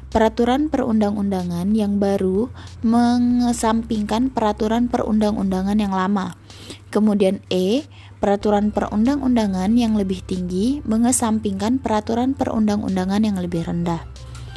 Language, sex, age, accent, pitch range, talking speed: Indonesian, female, 20-39, native, 195-230 Hz, 90 wpm